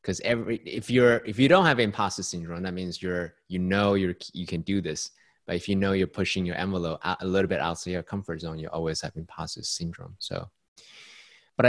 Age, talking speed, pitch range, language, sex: 20-39, 215 wpm, 90-105 Hz, English, male